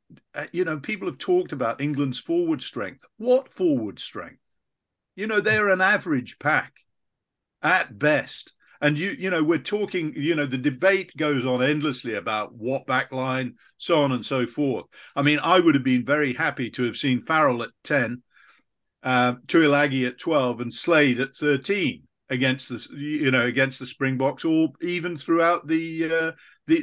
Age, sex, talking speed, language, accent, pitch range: 50-69, male, 170 wpm, English, British, 130-175 Hz